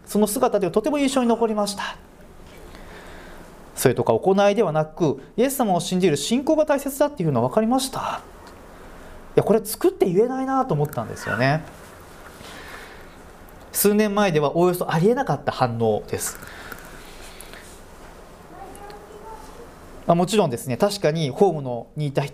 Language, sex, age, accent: Japanese, male, 40-59, native